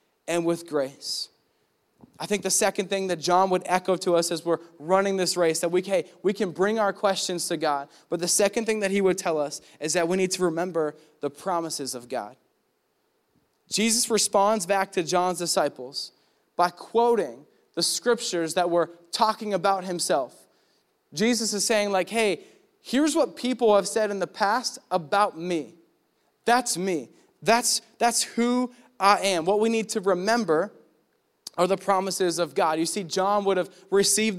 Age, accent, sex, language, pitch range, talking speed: 20-39, American, male, English, 170-205 Hz, 175 wpm